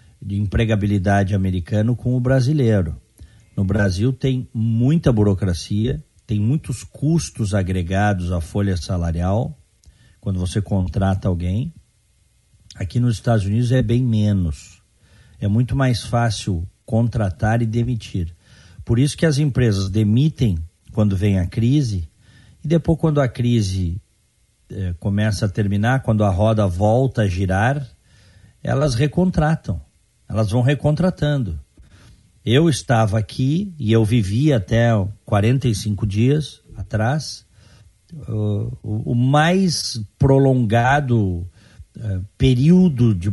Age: 50-69